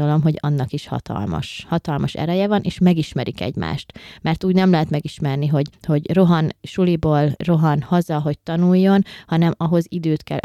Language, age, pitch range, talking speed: Hungarian, 20-39, 140-165 Hz, 155 wpm